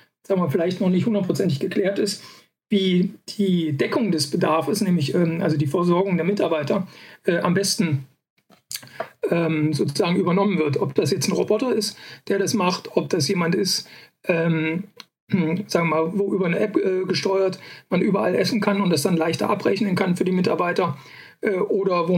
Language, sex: German, male